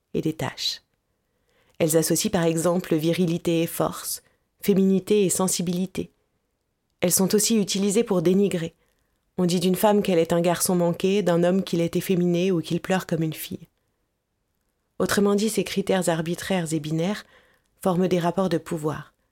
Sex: female